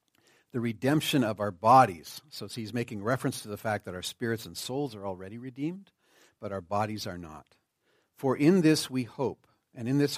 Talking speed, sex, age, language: 195 wpm, male, 50-69, English